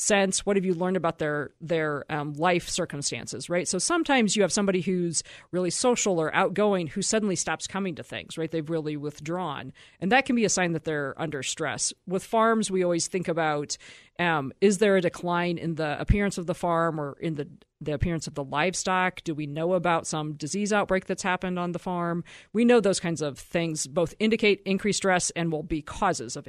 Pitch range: 160-200 Hz